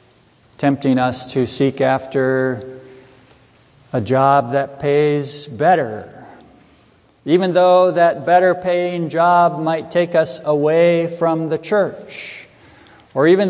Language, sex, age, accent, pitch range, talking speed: English, male, 50-69, American, 140-190 Hz, 105 wpm